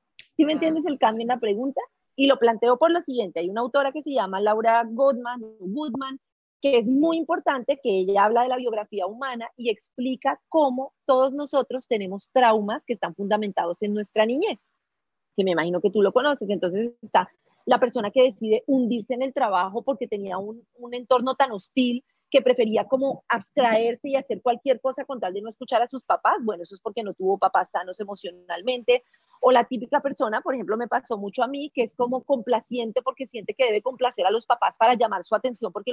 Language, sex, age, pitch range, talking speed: Spanish, female, 30-49, 220-275 Hz, 205 wpm